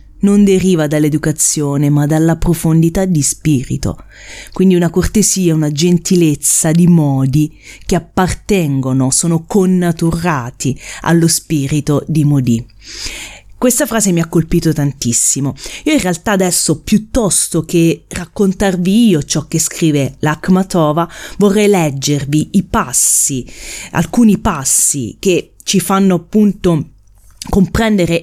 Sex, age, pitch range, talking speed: female, 30-49, 135-180 Hz, 110 wpm